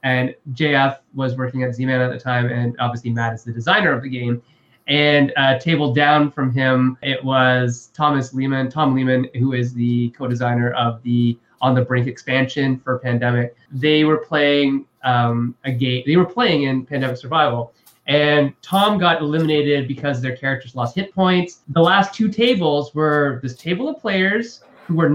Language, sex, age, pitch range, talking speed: English, male, 20-39, 130-165 Hz, 180 wpm